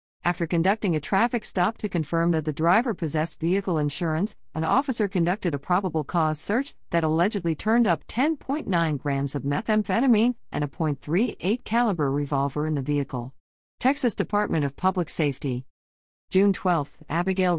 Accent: American